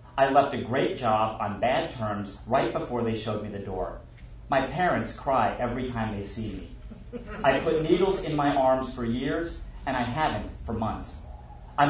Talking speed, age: 185 wpm, 40-59